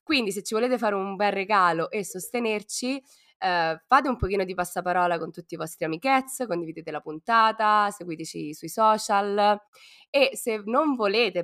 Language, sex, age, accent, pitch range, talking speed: Italian, female, 20-39, native, 170-230 Hz, 165 wpm